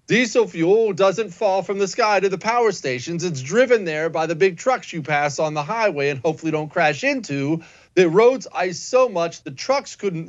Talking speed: 210 wpm